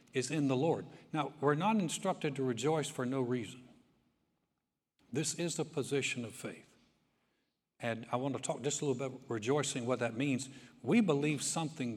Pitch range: 120-150 Hz